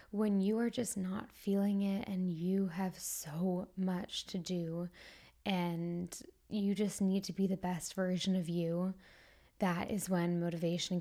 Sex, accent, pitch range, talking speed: female, American, 180-205 Hz, 160 wpm